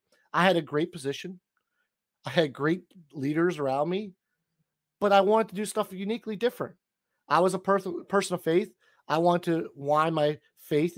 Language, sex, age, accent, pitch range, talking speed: English, male, 30-49, American, 140-185 Hz, 170 wpm